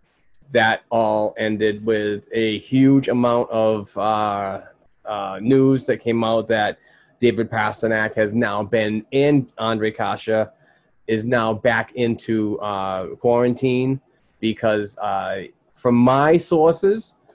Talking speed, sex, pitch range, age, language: 120 wpm, male, 110-125 Hz, 20-39, English